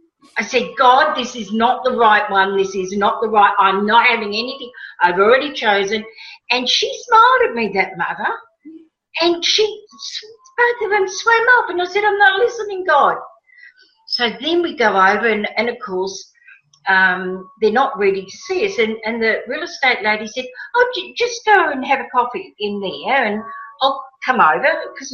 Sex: female